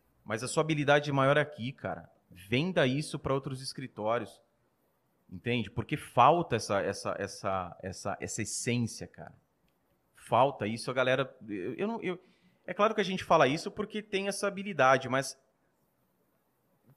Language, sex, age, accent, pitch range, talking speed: Portuguese, male, 30-49, Brazilian, 115-155 Hz, 150 wpm